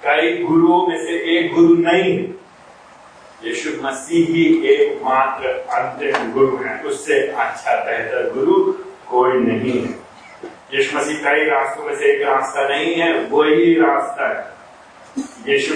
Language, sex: Hindi, male